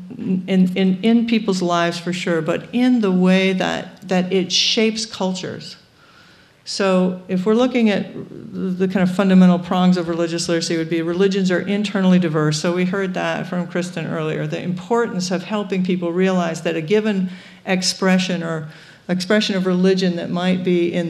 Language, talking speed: English, 170 wpm